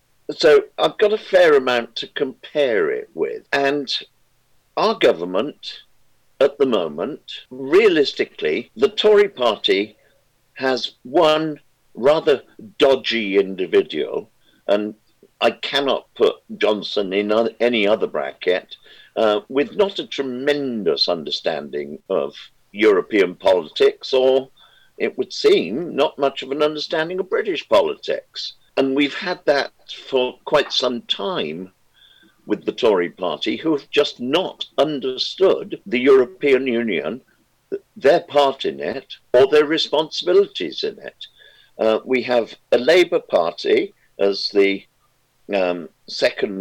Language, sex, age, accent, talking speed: English, male, 50-69, British, 120 wpm